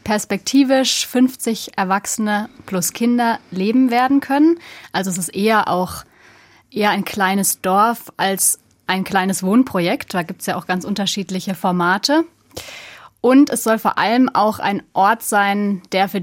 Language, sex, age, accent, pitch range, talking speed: German, female, 30-49, German, 190-230 Hz, 150 wpm